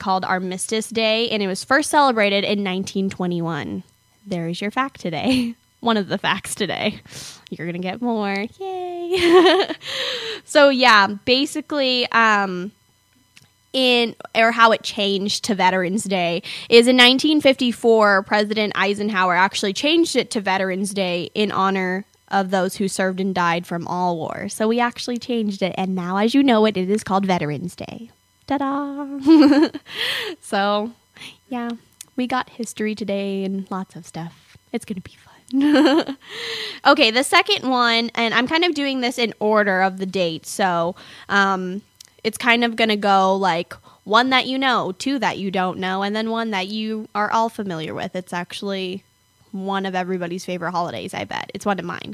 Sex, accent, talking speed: female, American, 170 wpm